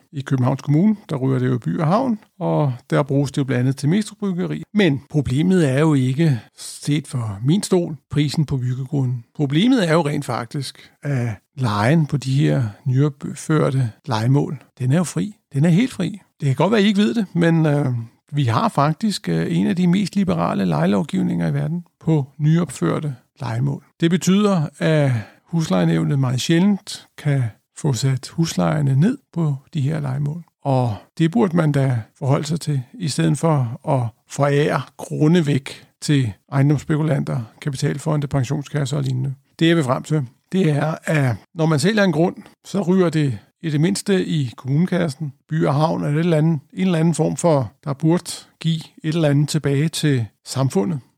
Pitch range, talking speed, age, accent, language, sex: 135-170 Hz, 180 wpm, 60-79, native, Danish, male